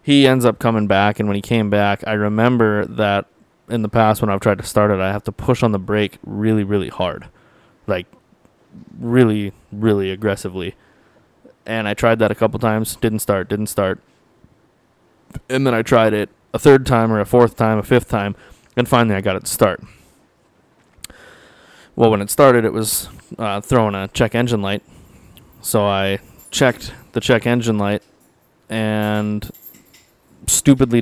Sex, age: male, 20-39